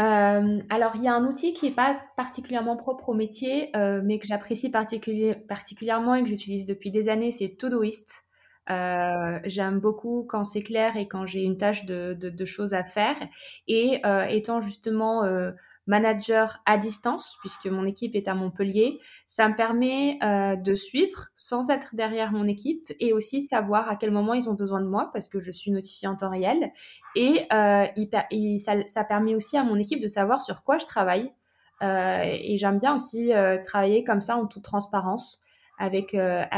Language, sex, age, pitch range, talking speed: French, female, 20-39, 195-235 Hz, 195 wpm